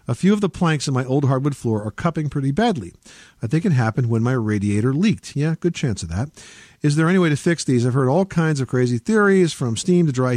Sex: male